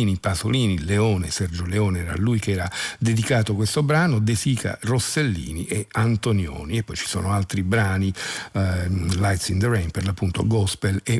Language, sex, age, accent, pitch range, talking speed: Italian, male, 50-69, native, 95-120 Hz, 160 wpm